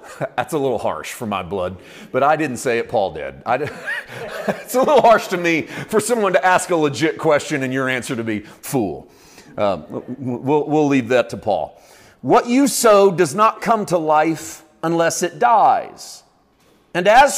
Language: English